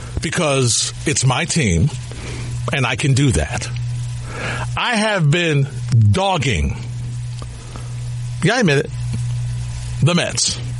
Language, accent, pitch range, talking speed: English, American, 120-190 Hz, 105 wpm